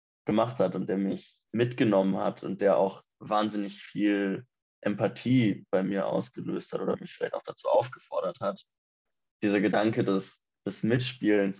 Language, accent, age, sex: German, German, 20-39, male